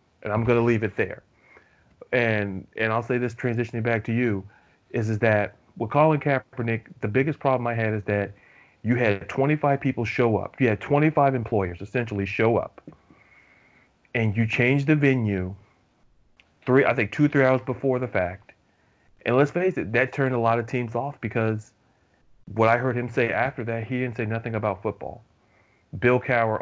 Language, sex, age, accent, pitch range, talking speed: English, male, 30-49, American, 105-125 Hz, 185 wpm